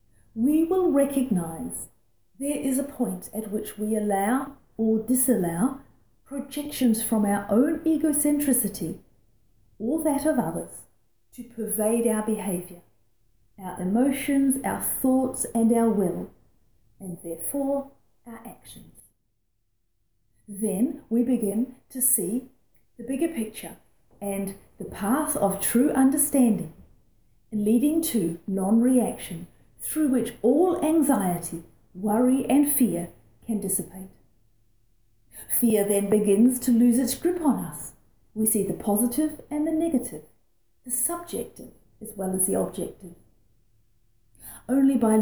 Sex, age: female, 40-59